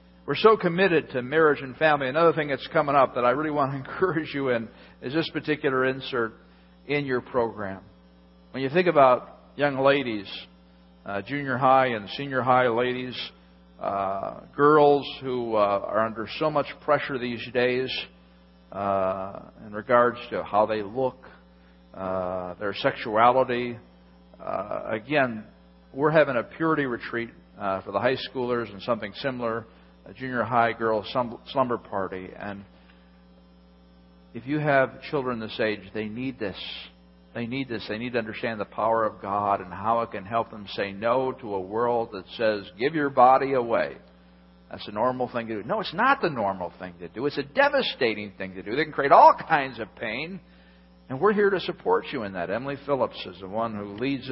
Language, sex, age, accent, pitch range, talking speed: English, male, 50-69, American, 95-135 Hz, 180 wpm